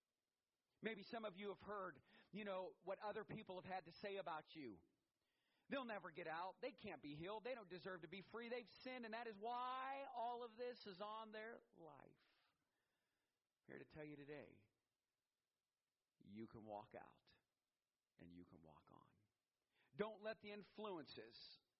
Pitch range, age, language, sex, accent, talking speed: 155-220 Hz, 40-59, English, male, American, 175 wpm